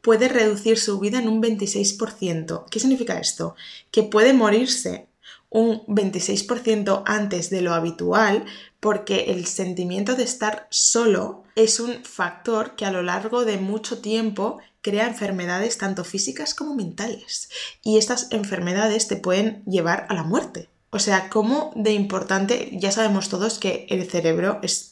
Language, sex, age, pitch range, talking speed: Spanish, female, 20-39, 180-220 Hz, 150 wpm